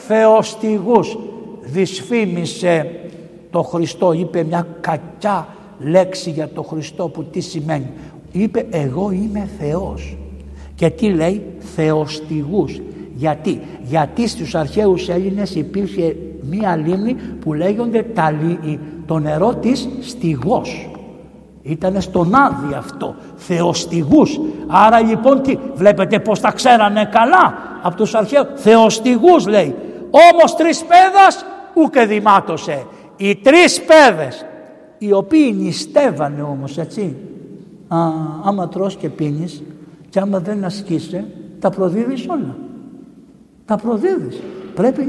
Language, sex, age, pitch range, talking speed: Greek, male, 60-79, 165-245 Hz, 110 wpm